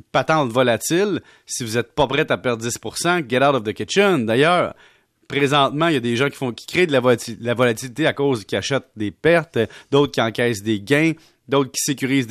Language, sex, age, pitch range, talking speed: French, male, 30-49, 120-170 Hz, 210 wpm